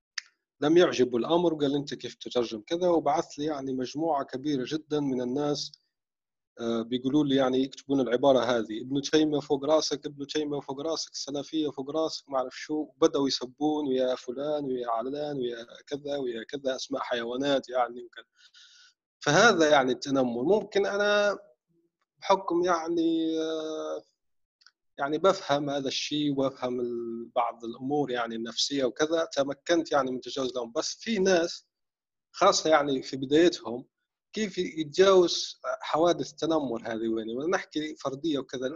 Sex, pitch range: male, 125-165 Hz